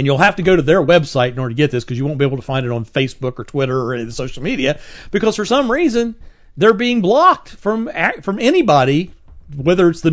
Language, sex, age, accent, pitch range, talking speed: English, male, 40-59, American, 140-200 Hz, 260 wpm